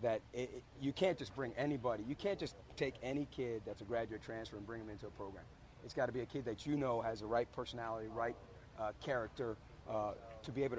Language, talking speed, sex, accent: English, 240 wpm, male, American